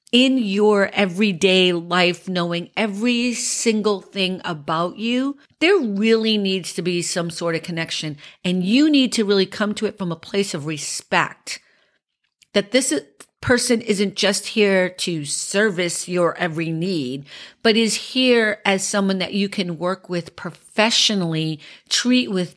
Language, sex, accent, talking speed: English, female, American, 150 wpm